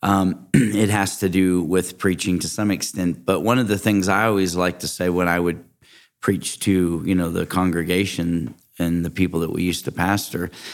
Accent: American